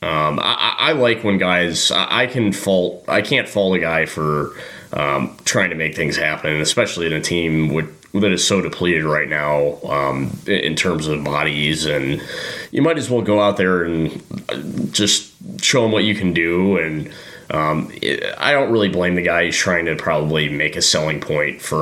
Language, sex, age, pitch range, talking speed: English, male, 20-39, 80-105 Hz, 195 wpm